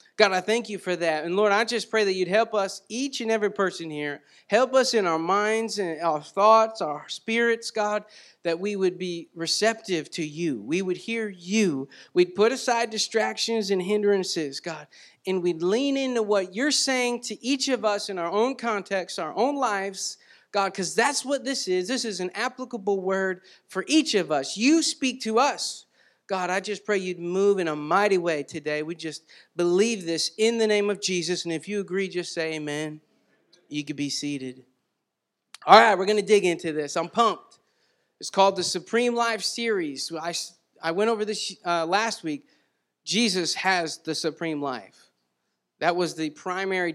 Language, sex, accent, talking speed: English, male, American, 190 wpm